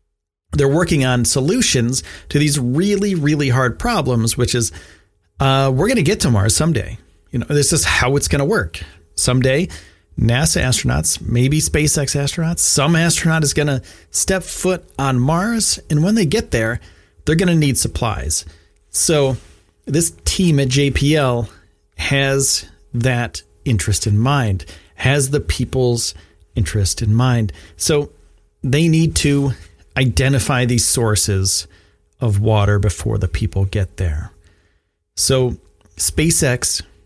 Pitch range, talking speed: 85-140 Hz, 140 wpm